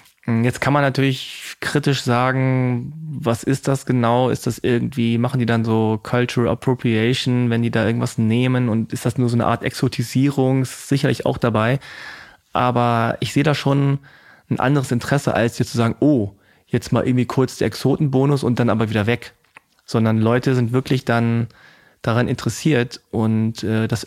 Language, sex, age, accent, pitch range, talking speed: German, male, 20-39, German, 115-135 Hz, 170 wpm